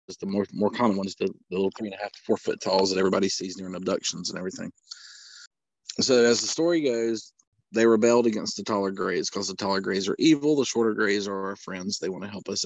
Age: 40-59